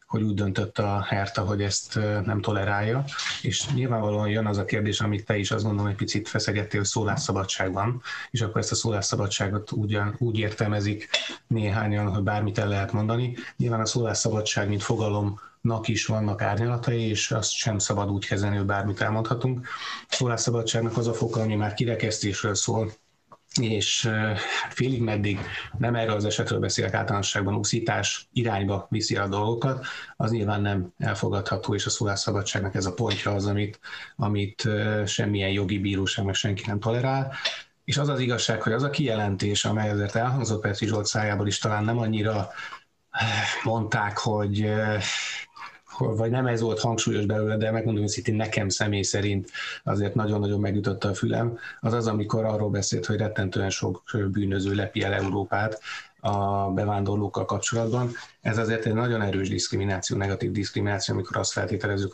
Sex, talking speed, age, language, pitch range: male, 155 wpm, 30-49, Hungarian, 100-115 Hz